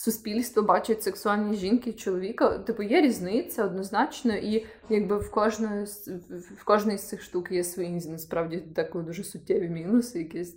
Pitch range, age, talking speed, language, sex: 185-230 Hz, 20-39, 135 wpm, Ukrainian, female